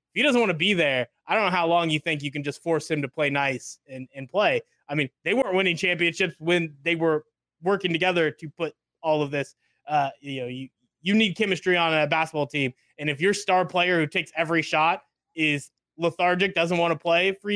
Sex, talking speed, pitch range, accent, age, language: male, 230 wpm, 150-190 Hz, American, 20-39, English